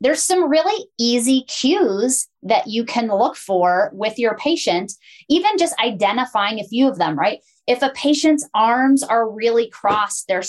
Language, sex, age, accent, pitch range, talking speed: English, female, 30-49, American, 195-270 Hz, 165 wpm